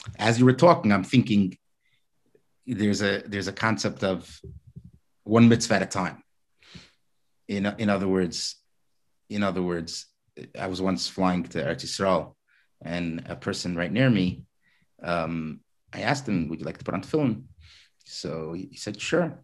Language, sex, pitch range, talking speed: English, male, 90-115 Hz, 155 wpm